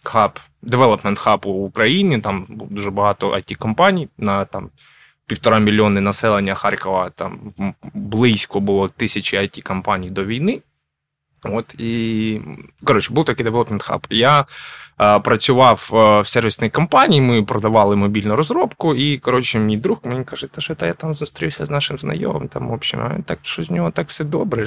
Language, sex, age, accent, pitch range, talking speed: Ukrainian, male, 20-39, native, 100-135 Hz, 160 wpm